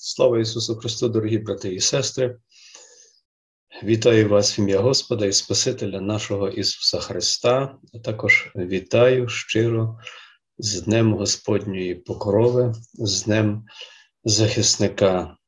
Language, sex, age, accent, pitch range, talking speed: Ukrainian, male, 40-59, native, 105-130 Hz, 110 wpm